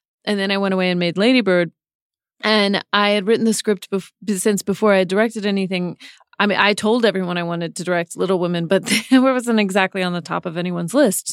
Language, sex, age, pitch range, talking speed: English, female, 30-49, 175-225 Hz, 220 wpm